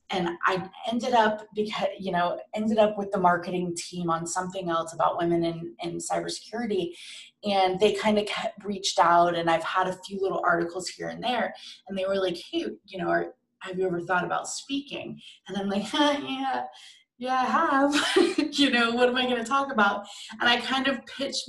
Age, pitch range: 20-39, 175-220 Hz